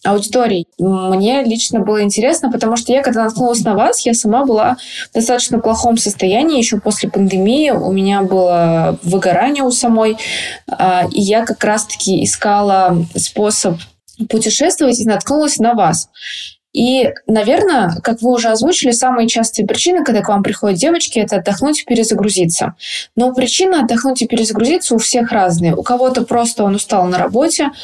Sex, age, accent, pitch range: female, 20-39, native, 190-235 Hz